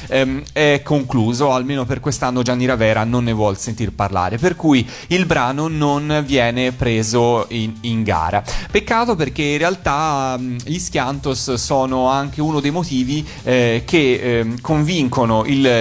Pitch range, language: 115-140 Hz, Italian